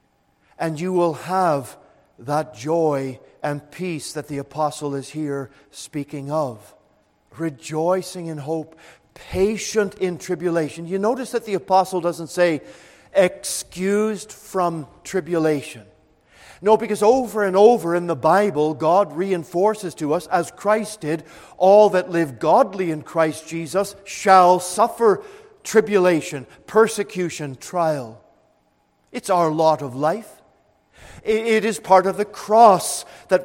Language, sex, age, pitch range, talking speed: English, male, 50-69, 155-200 Hz, 125 wpm